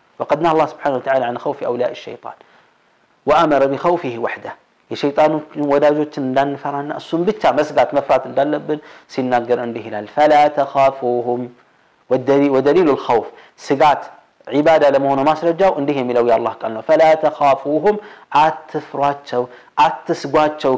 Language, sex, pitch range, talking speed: Amharic, male, 120-150 Hz, 125 wpm